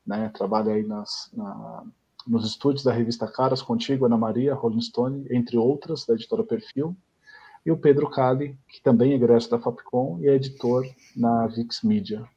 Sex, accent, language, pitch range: male, Brazilian, Portuguese, 115-150 Hz